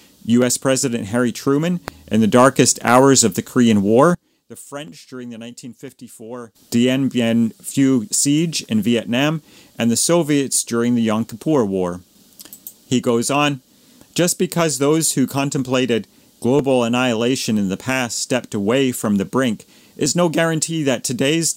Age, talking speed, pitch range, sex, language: 40-59, 150 wpm, 120-155 Hz, male, English